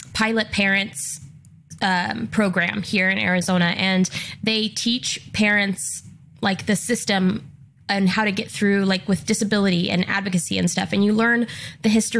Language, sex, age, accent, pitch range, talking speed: English, female, 20-39, American, 175-210 Hz, 150 wpm